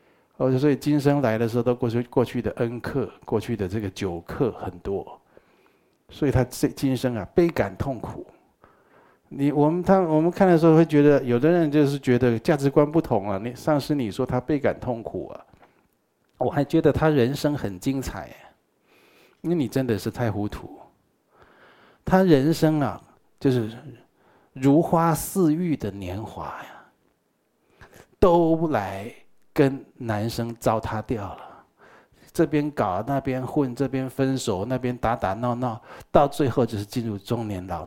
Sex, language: male, Chinese